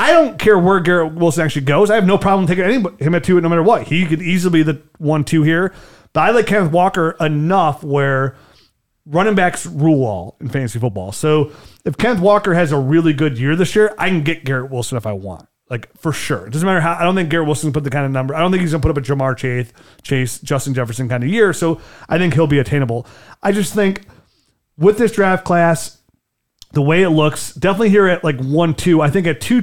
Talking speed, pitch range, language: 245 wpm, 135-175 Hz, English